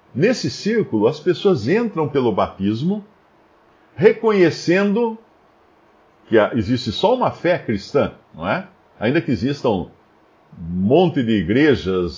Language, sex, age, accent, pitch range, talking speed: Portuguese, male, 50-69, Brazilian, 120-180 Hz, 115 wpm